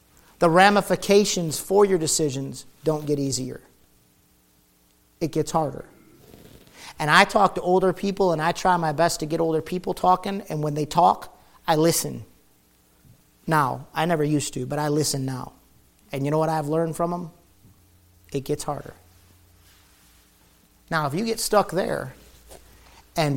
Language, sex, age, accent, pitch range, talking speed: English, male, 50-69, American, 135-175 Hz, 155 wpm